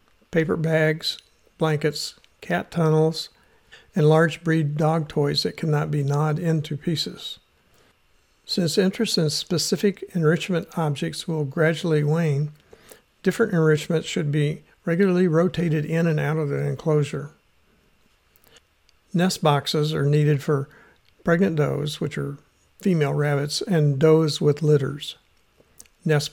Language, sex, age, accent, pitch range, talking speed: English, male, 60-79, American, 145-165 Hz, 120 wpm